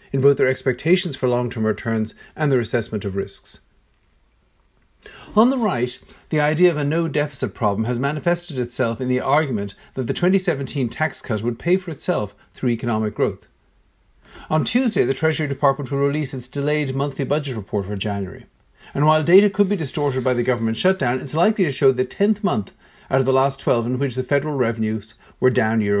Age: 50-69